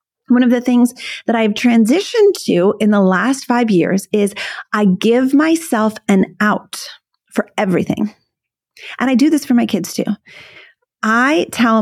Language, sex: English, female